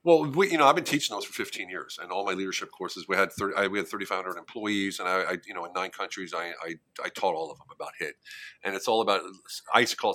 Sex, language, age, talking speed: male, English, 40-59, 290 wpm